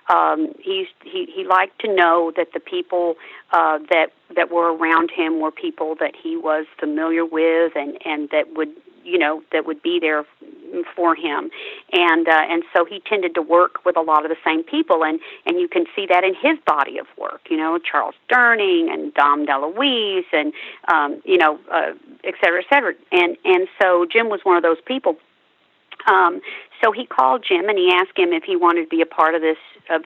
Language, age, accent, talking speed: English, 40-59, American, 210 wpm